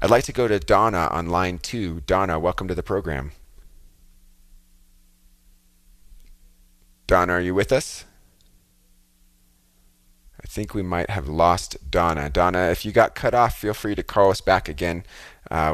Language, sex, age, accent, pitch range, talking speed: English, male, 30-49, American, 80-105 Hz, 155 wpm